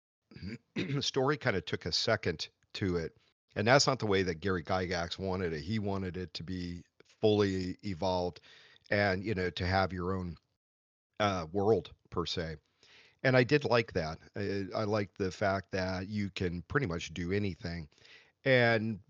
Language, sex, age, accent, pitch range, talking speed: English, male, 40-59, American, 90-105 Hz, 175 wpm